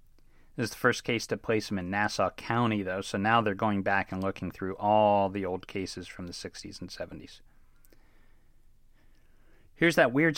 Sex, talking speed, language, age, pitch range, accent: male, 185 wpm, English, 40-59, 105-140 Hz, American